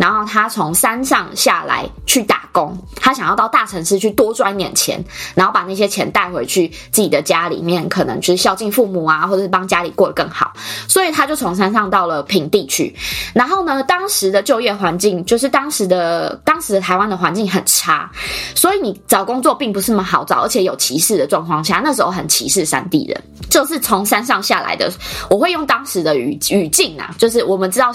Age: 20-39